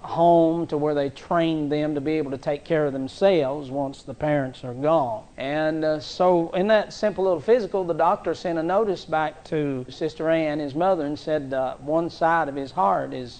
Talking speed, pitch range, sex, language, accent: 210 wpm, 145-170 Hz, male, English, American